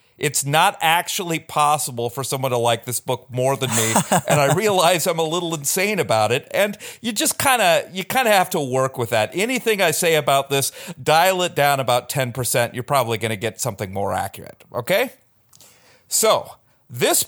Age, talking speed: 40-59, 200 wpm